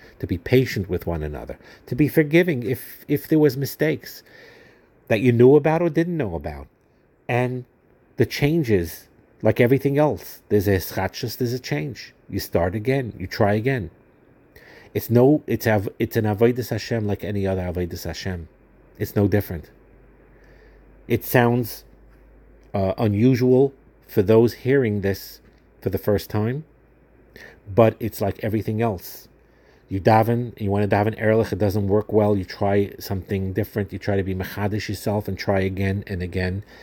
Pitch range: 95-125 Hz